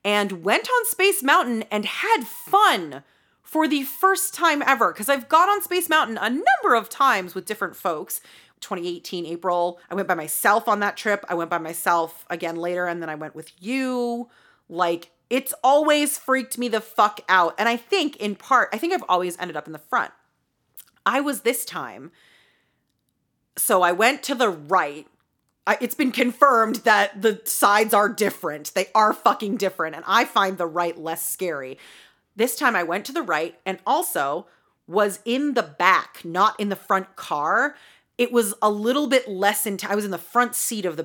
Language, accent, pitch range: English, American, 180-250 Hz